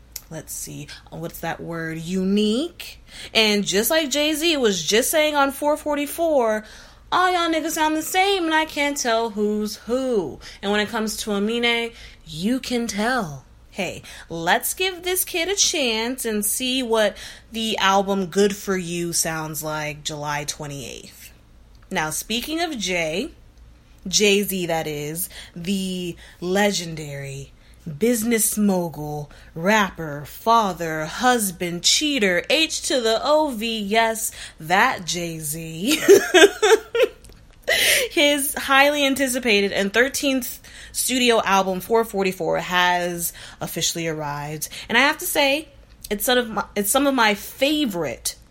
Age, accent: 20-39, American